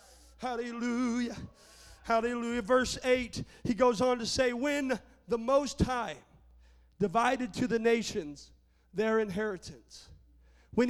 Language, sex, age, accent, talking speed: English, male, 40-59, American, 110 wpm